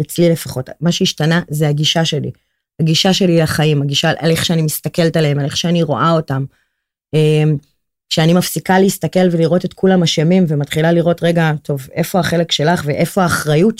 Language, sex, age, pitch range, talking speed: Hebrew, female, 30-49, 150-180 Hz, 160 wpm